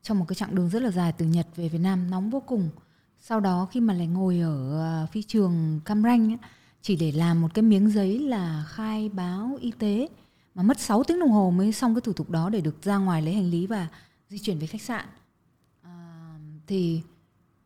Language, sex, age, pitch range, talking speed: Vietnamese, female, 20-39, 170-225 Hz, 230 wpm